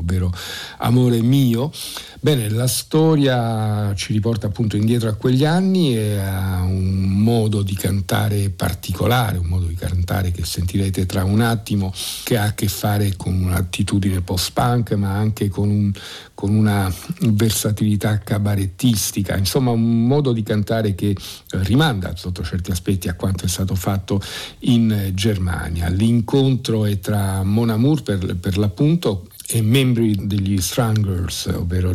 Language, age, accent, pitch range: Italian, 50-69, native, 95-120 Hz